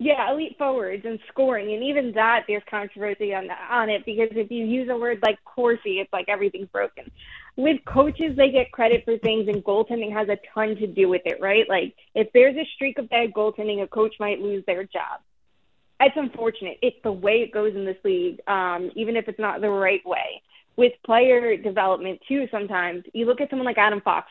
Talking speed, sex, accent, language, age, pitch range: 210 wpm, female, American, English, 20-39, 205-255 Hz